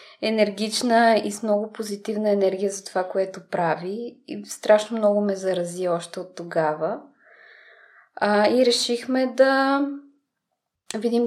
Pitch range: 185-230 Hz